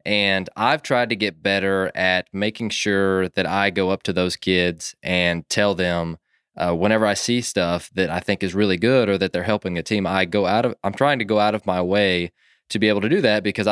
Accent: American